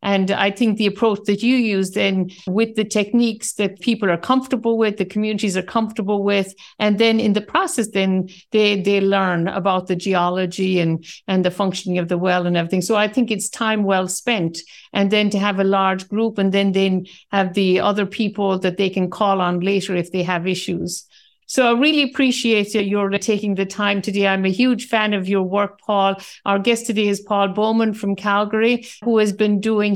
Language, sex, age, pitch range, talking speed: English, female, 60-79, 190-215 Hz, 210 wpm